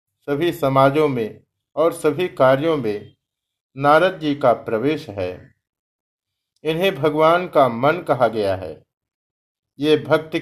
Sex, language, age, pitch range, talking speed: male, Hindi, 50-69, 130-165 Hz, 120 wpm